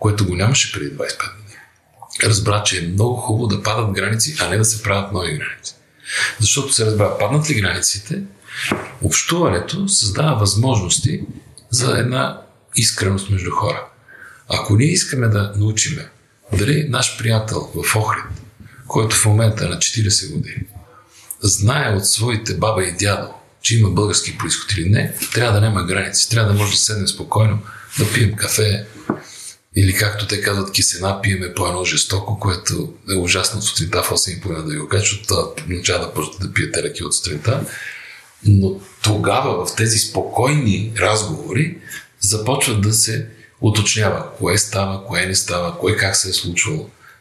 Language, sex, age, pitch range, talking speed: Bulgarian, male, 50-69, 100-120 Hz, 155 wpm